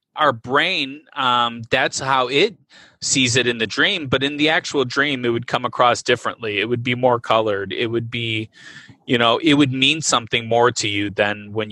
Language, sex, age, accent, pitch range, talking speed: English, male, 30-49, American, 110-135 Hz, 205 wpm